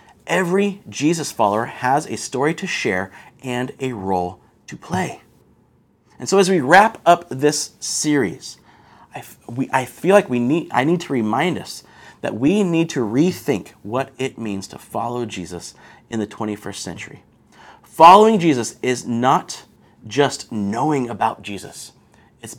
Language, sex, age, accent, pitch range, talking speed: English, male, 30-49, American, 115-165 Hz, 150 wpm